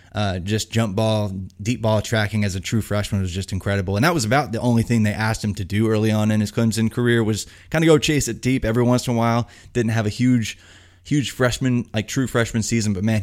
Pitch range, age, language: 100-120 Hz, 20-39, English